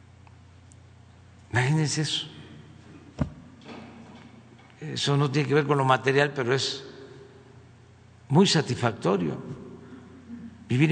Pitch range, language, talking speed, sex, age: 110-150 Hz, Spanish, 80 wpm, male, 60-79